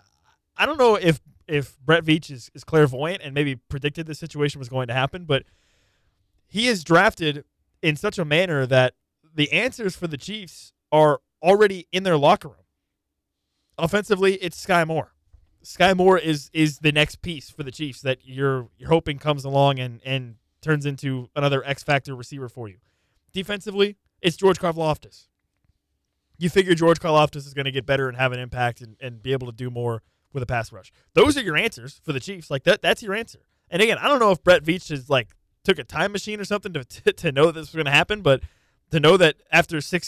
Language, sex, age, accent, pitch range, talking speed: English, male, 20-39, American, 130-175 Hz, 210 wpm